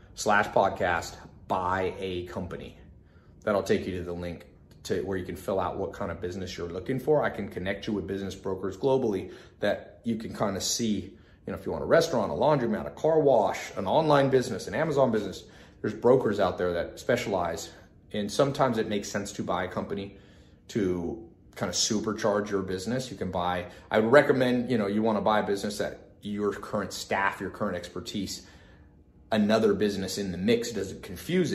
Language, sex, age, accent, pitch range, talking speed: English, male, 30-49, American, 90-110 Hz, 200 wpm